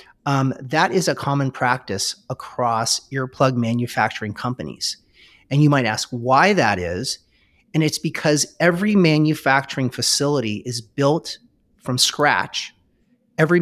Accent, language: American, English